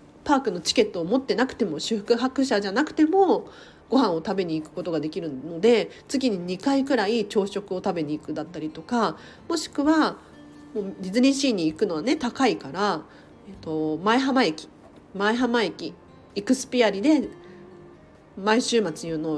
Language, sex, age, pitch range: Japanese, female, 40-59, 195-295 Hz